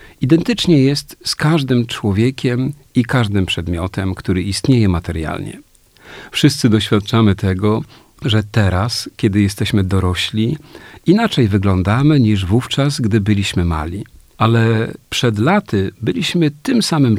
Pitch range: 100-130 Hz